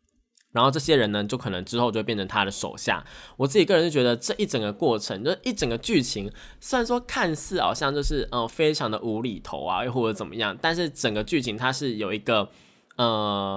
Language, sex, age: Chinese, male, 20-39